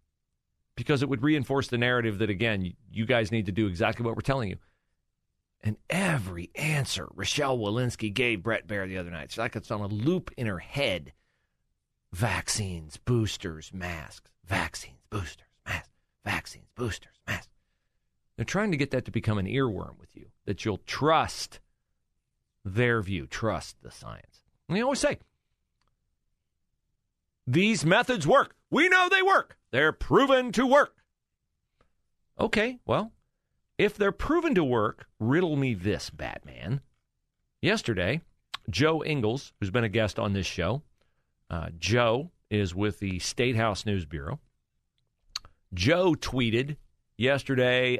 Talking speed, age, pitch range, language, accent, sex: 145 wpm, 40-59, 100-150 Hz, English, American, male